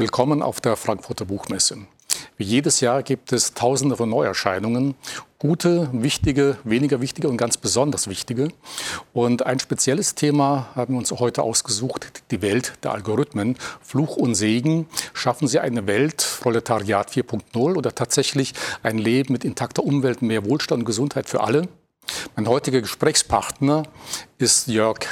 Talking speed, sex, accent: 145 wpm, male, German